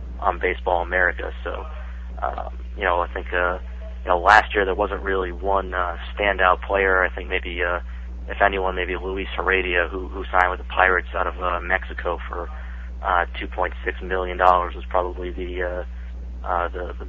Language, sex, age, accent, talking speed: English, male, 30-49, American, 190 wpm